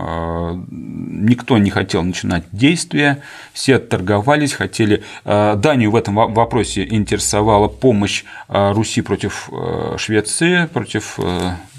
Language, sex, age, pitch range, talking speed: Russian, male, 40-59, 95-120 Hz, 90 wpm